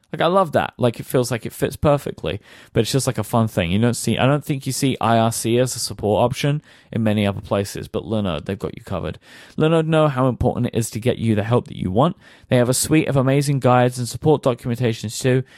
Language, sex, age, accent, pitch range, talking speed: English, male, 30-49, British, 110-140 Hz, 255 wpm